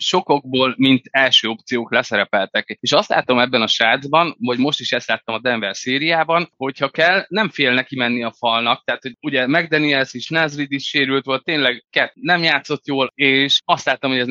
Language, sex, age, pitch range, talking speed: Hungarian, male, 20-39, 125-160 Hz, 185 wpm